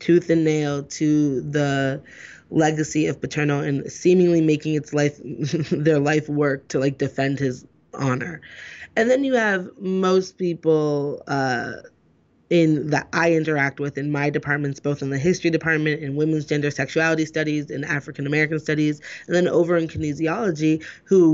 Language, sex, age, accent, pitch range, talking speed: English, female, 20-39, American, 145-155 Hz, 155 wpm